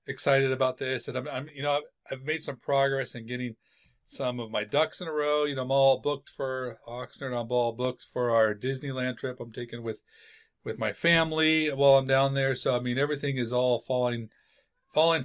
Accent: American